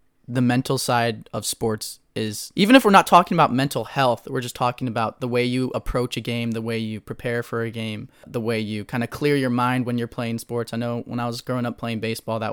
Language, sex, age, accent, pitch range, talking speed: English, male, 20-39, American, 110-125 Hz, 255 wpm